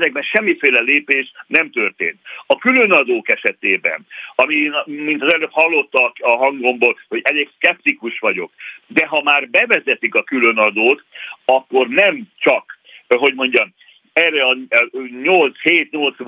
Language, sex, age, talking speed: Hungarian, male, 60-79, 120 wpm